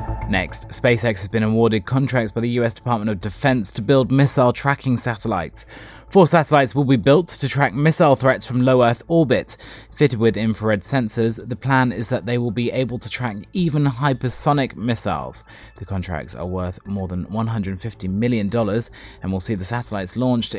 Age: 20-39